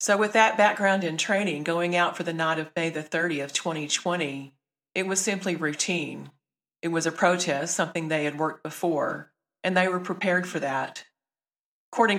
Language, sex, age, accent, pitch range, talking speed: English, female, 40-59, American, 155-180 Hz, 175 wpm